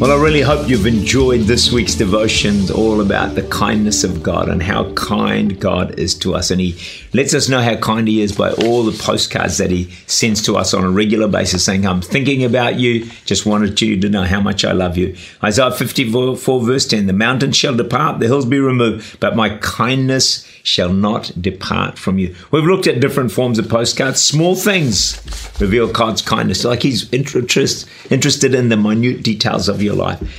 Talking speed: 200 wpm